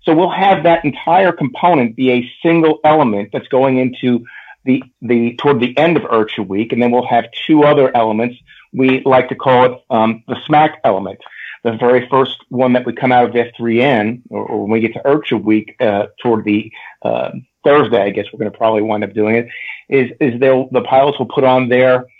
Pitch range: 115-135 Hz